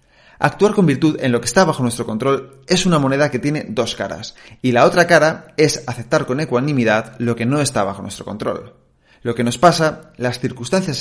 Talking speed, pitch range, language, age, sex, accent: 205 wpm, 120-140 Hz, Spanish, 30-49, male, Spanish